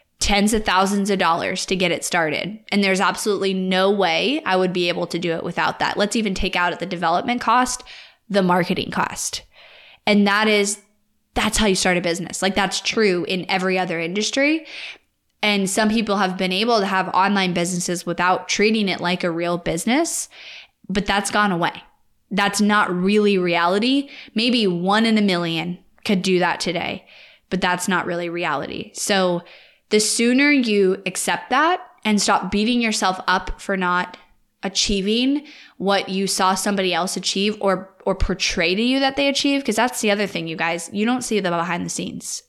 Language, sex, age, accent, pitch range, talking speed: English, female, 20-39, American, 180-215 Hz, 185 wpm